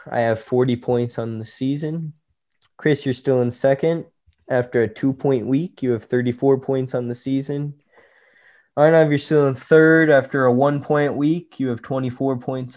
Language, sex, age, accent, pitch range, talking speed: English, male, 20-39, American, 120-140 Hz, 170 wpm